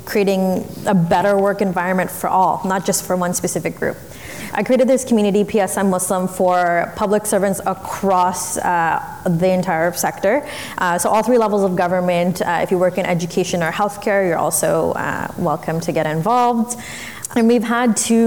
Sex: female